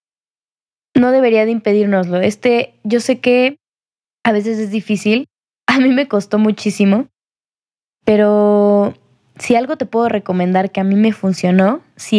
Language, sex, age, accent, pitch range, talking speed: Spanish, female, 10-29, Mexican, 195-240 Hz, 145 wpm